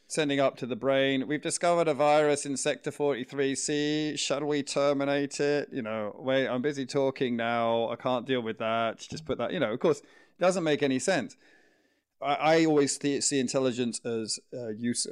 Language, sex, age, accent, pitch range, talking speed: English, male, 30-49, British, 110-140 Hz, 195 wpm